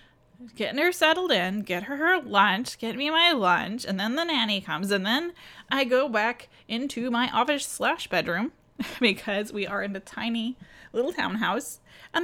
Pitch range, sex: 185-240 Hz, female